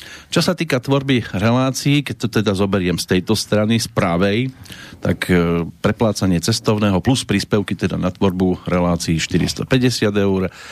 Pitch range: 85-110 Hz